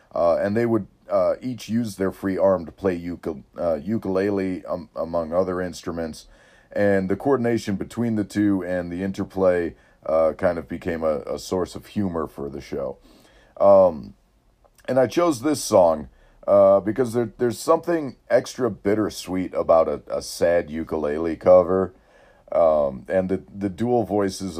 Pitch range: 80-100 Hz